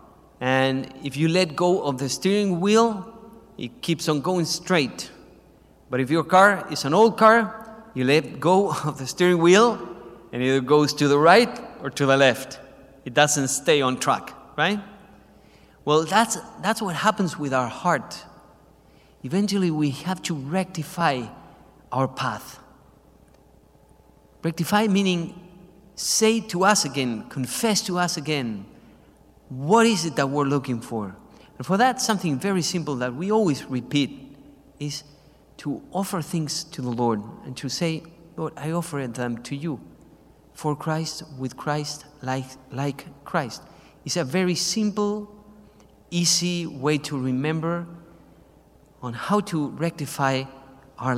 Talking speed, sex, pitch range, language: 145 wpm, male, 135-185 Hz, English